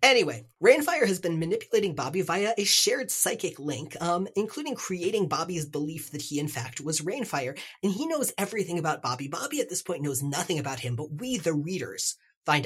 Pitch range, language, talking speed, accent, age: 135-180 Hz, English, 195 wpm, American, 30-49